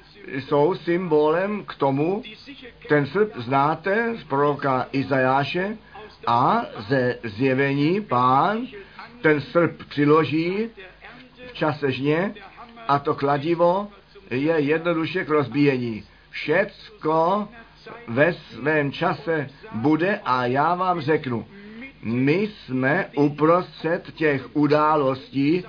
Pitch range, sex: 140-185 Hz, male